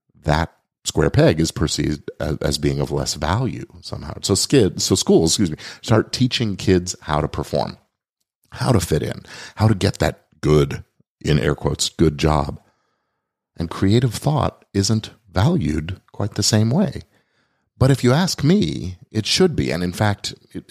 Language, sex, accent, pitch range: English, male, American, 80-110 Hz